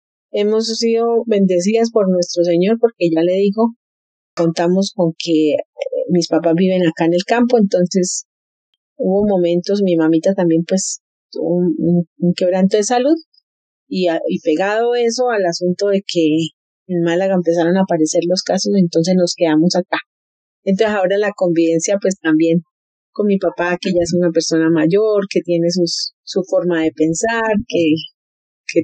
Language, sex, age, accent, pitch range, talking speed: Spanish, female, 30-49, Colombian, 170-200 Hz, 160 wpm